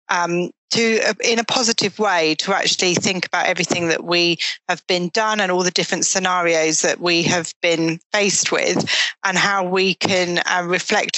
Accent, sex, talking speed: British, female, 180 wpm